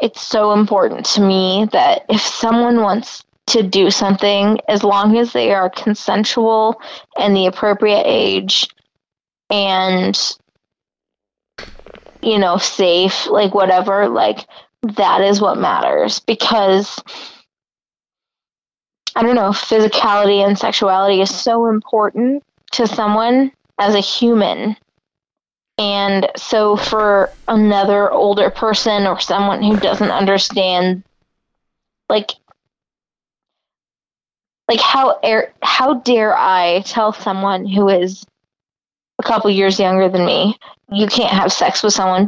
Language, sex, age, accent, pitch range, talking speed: English, female, 20-39, American, 195-225 Hz, 115 wpm